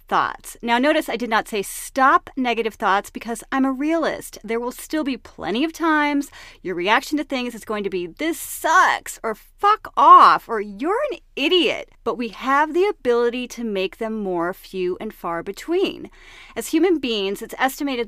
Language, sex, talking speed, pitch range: English, female, 185 wpm, 225-325 Hz